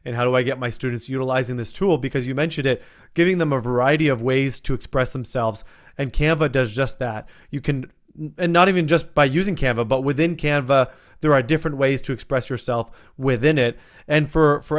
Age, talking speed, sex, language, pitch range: 30-49, 210 wpm, male, English, 125-145 Hz